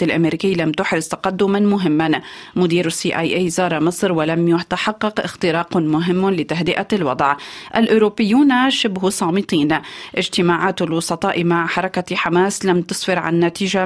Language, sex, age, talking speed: Arabic, female, 30-49, 125 wpm